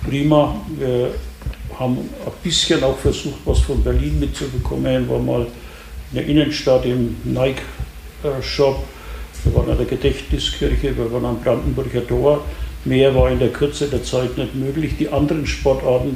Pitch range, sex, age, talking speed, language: 85-145 Hz, male, 60-79, 150 wpm, German